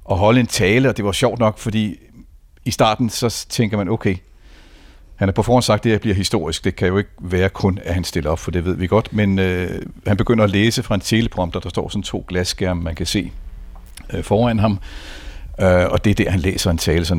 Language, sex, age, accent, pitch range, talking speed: Danish, male, 60-79, native, 90-115 Hz, 250 wpm